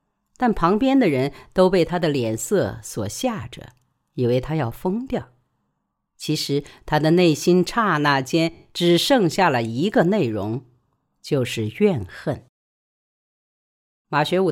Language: Chinese